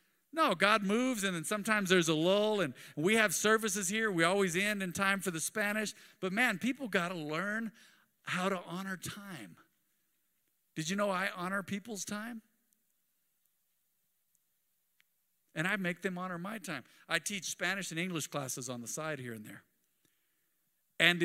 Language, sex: English, male